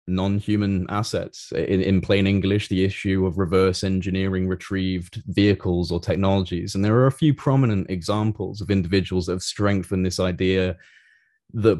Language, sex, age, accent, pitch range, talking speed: English, male, 20-39, British, 90-105 Hz, 155 wpm